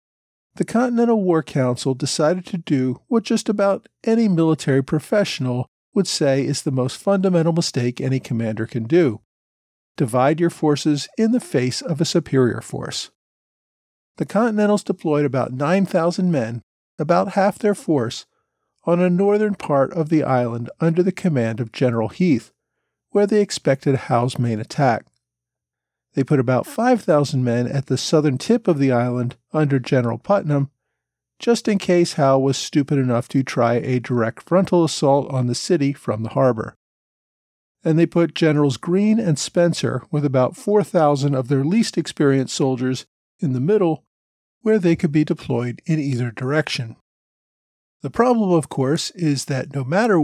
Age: 50-69